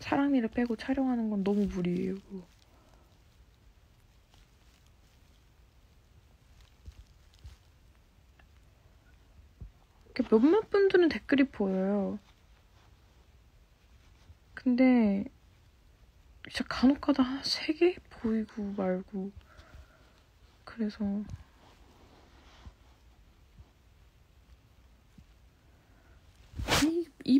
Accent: native